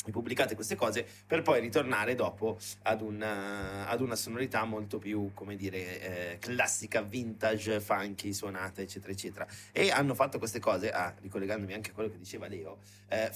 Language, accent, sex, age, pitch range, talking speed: Italian, native, male, 30-49, 100-120 Hz, 155 wpm